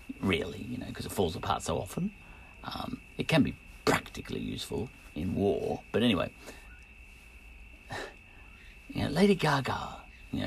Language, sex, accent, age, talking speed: English, male, British, 50-69, 140 wpm